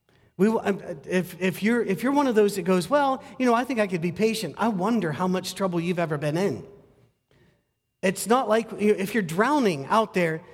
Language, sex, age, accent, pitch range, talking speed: English, male, 40-59, American, 150-210 Hz, 210 wpm